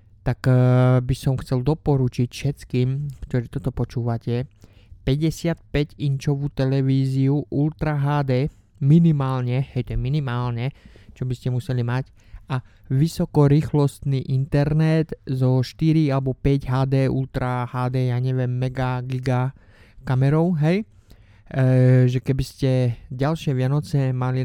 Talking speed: 120 wpm